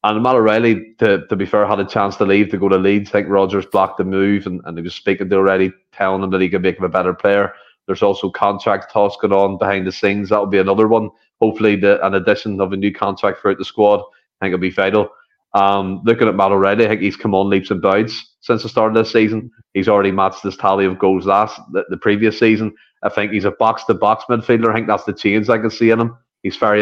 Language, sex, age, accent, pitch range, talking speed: English, male, 30-49, Irish, 95-110 Hz, 260 wpm